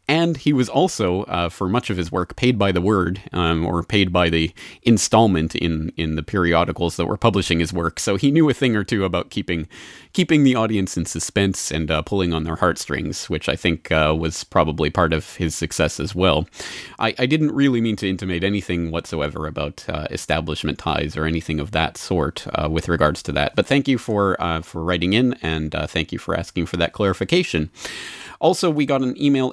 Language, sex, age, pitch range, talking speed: English, male, 30-49, 85-115 Hz, 215 wpm